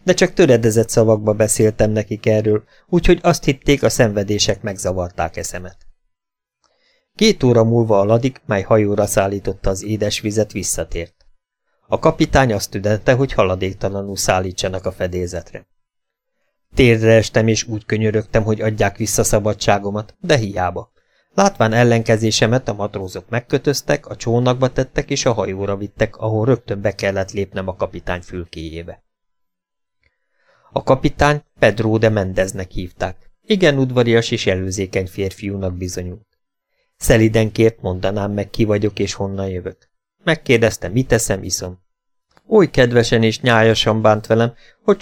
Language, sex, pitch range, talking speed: Hungarian, male, 100-125 Hz, 130 wpm